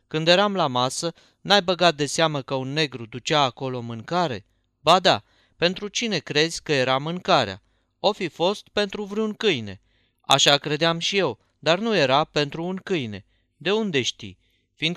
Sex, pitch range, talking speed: male, 125-175 Hz, 165 wpm